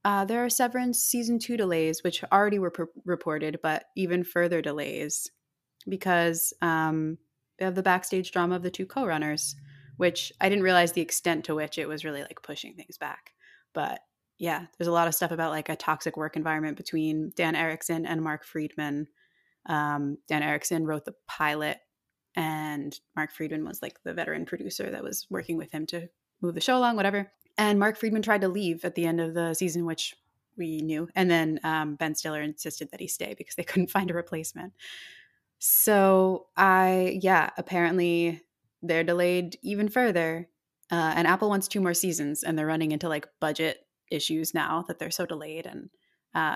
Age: 20-39